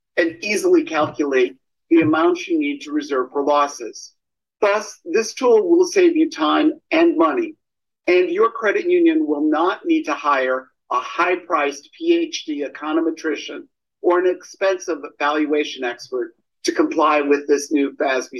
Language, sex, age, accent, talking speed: English, male, 50-69, American, 145 wpm